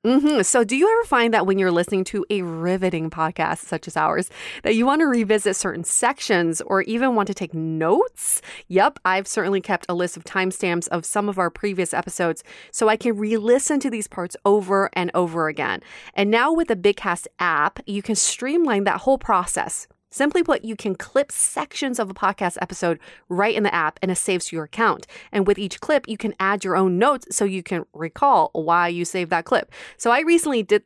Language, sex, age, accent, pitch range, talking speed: English, female, 30-49, American, 175-225 Hz, 215 wpm